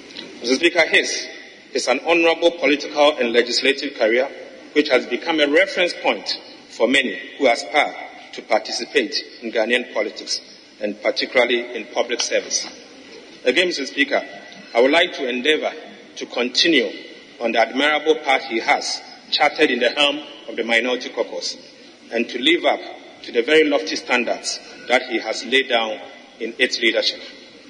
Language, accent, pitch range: English, Nigerian, 120-175 Hz